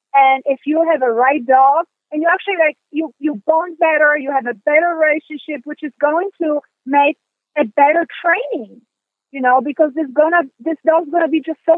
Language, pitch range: English, 260-315 Hz